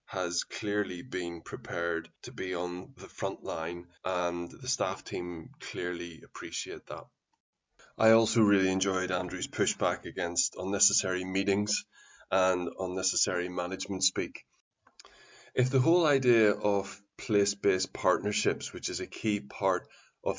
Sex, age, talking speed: male, 20-39, 125 wpm